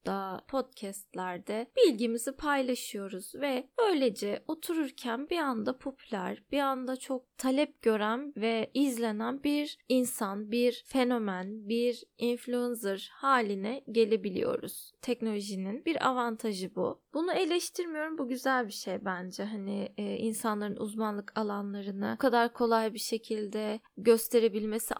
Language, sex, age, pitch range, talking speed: Turkish, female, 10-29, 215-270 Hz, 110 wpm